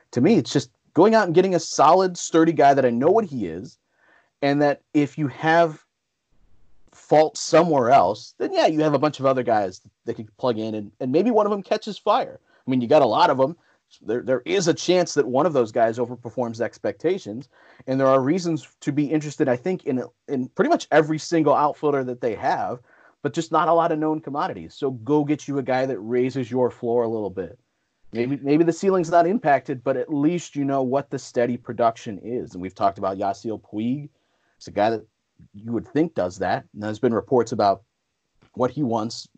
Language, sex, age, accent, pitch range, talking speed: English, male, 30-49, American, 115-155 Hz, 225 wpm